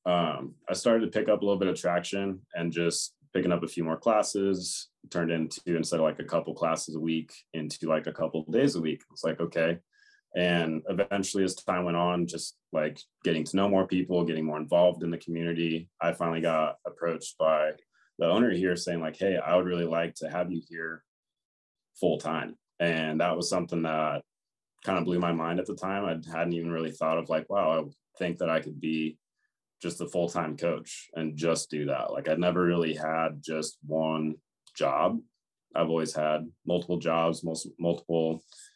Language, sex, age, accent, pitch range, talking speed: English, male, 20-39, American, 80-90 Hz, 205 wpm